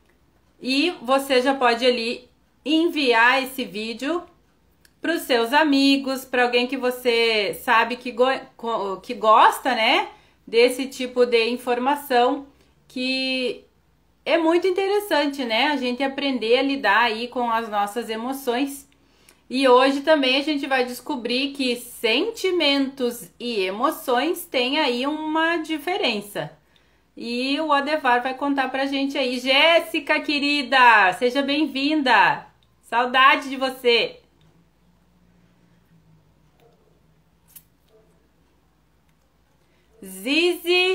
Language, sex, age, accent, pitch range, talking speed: Portuguese, female, 30-49, Brazilian, 240-300 Hz, 105 wpm